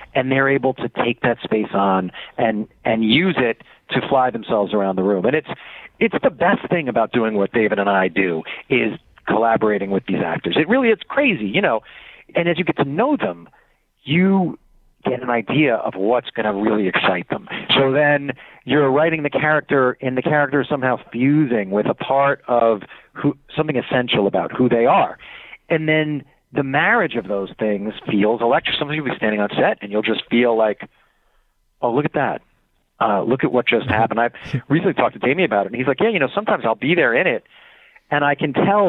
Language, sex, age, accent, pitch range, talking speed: English, male, 40-59, American, 110-155 Hz, 210 wpm